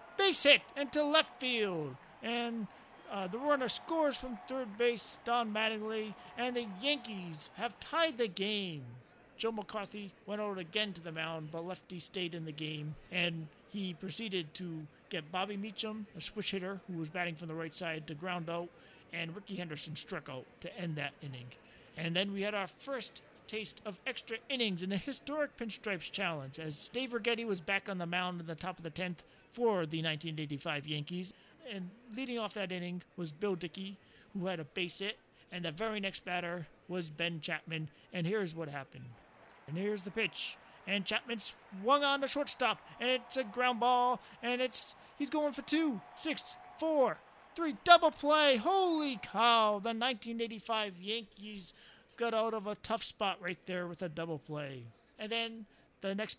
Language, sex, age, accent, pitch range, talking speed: English, male, 40-59, American, 175-230 Hz, 180 wpm